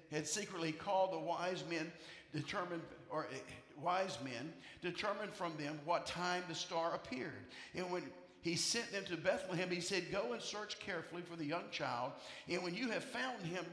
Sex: male